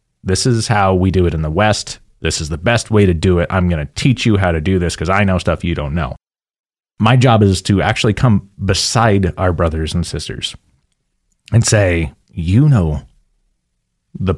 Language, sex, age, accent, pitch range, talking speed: English, male, 30-49, American, 85-105 Hz, 205 wpm